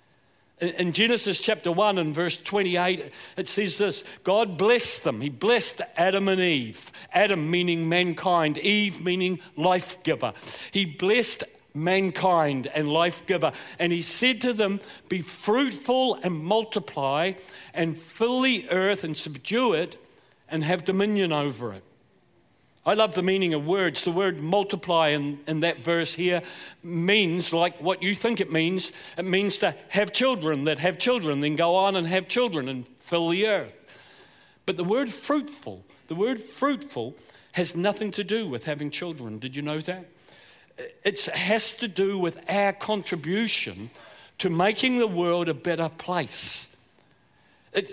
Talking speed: 155 wpm